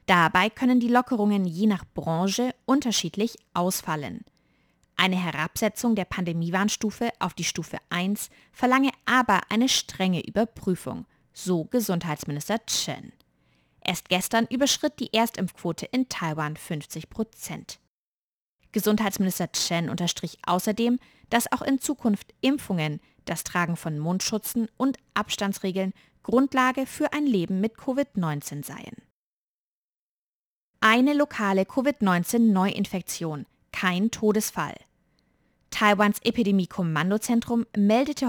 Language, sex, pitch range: German, female, 180-235 Hz